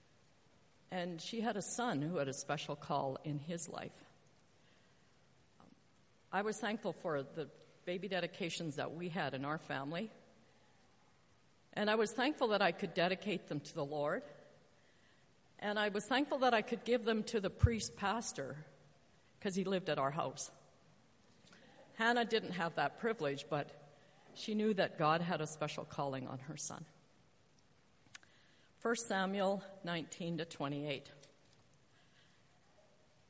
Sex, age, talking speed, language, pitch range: female, 50-69, 135 wpm, English, 150-205 Hz